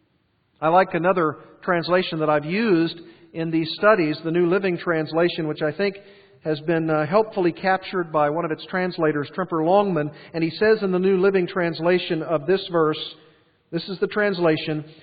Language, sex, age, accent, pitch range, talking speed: English, male, 50-69, American, 160-200 Hz, 170 wpm